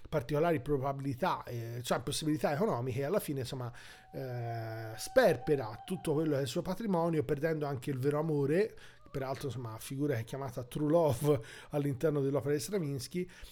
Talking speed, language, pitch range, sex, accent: 145 wpm, Italian, 130-155 Hz, male, native